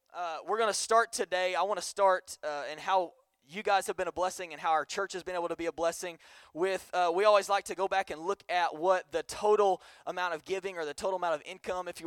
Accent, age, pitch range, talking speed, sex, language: American, 20-39, 155-195 Hz, 275 wpm, male, English